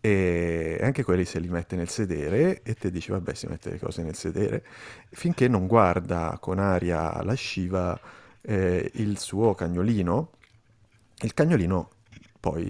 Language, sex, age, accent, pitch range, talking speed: Italian, male, 30-49, native, 85-110 Hz, 150 wpm